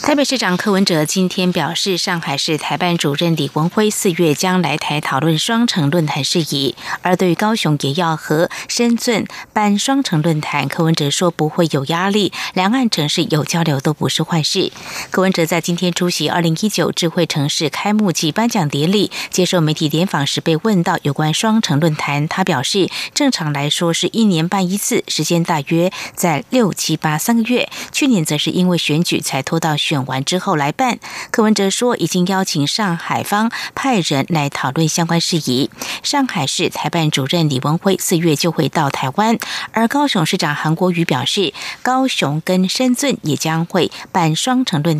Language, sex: Chinese, female